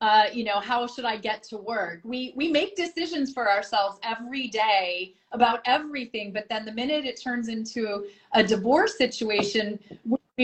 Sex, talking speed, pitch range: female, 170 wpm, 195-250 Hz